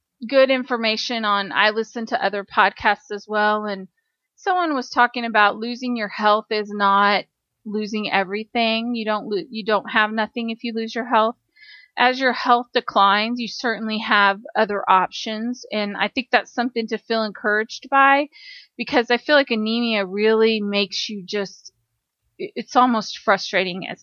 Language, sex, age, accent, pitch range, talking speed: English, female, 30-49, American, 205-245 Hz, 160 wpm